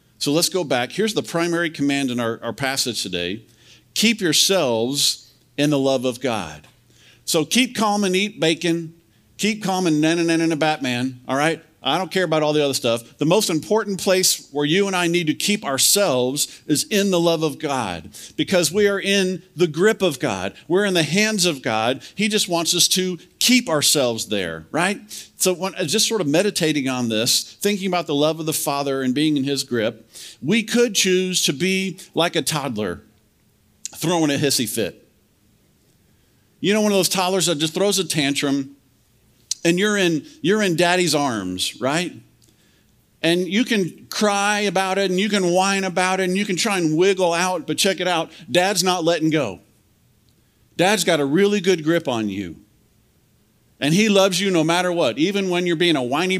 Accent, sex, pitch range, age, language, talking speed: American, male, 125-185 Hz, 50-69, English, 195 wpm